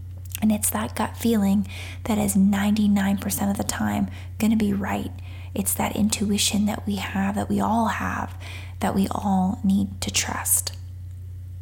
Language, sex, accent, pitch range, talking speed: English, female, American, 90-105 Hz, 160 wpm